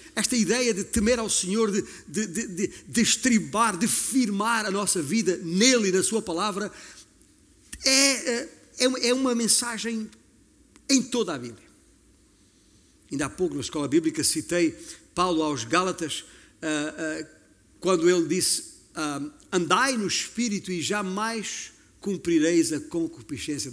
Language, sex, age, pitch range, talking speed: Portuguese, male, 50-69, 130-190 Hz, 120 wpm